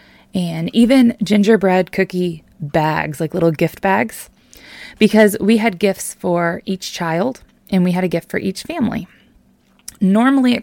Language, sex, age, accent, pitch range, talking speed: English, female, 20-39, American, 180-220 Hz, 145 wpm